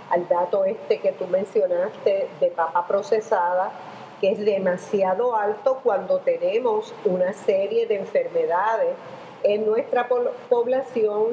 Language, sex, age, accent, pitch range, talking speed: Spanish, female, 40-59, American, 195-290 Hz, 115 wpm